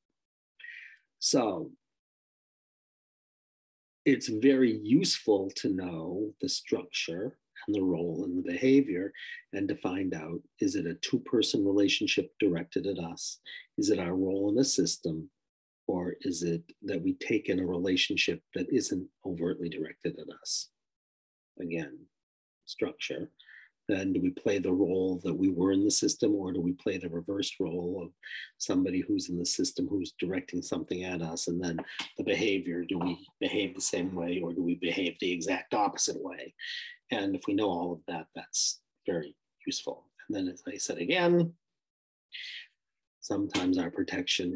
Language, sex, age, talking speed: English, male, 50-69, 160 wpm